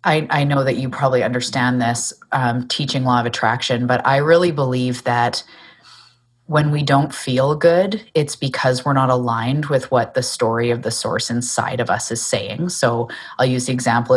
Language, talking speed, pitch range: English, 190 wpm, 120-135 Hz